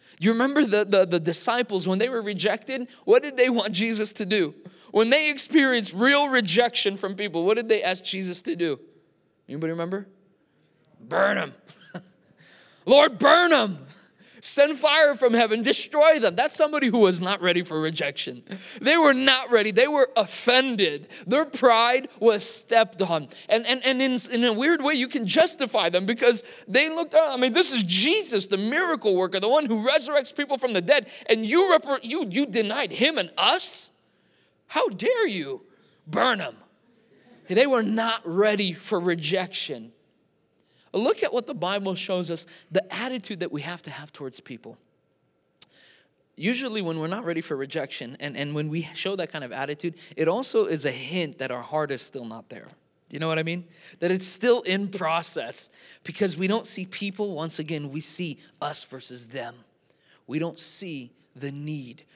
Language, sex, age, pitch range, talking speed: English, male, 20-39, 170-255 Hz, 180 wpm